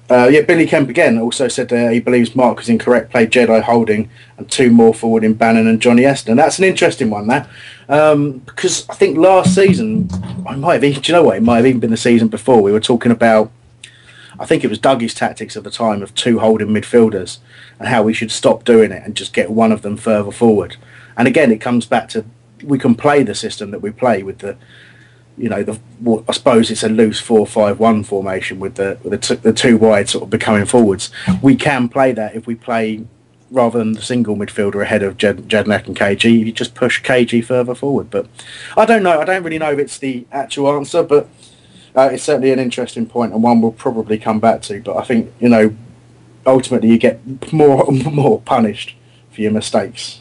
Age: 30-49